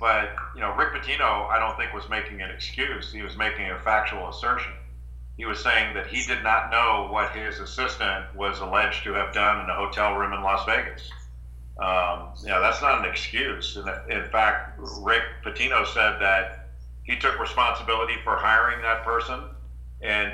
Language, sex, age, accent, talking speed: English, male, 50-69, American, 185 wpm